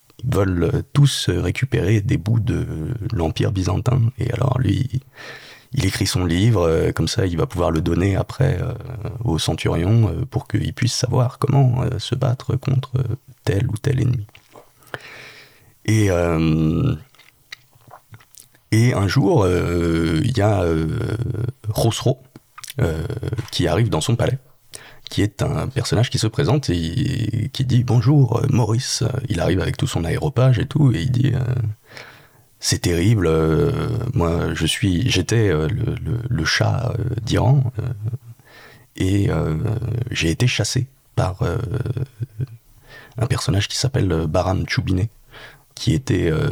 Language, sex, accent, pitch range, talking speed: French, male, French, 105-130 Hz, 135 wpm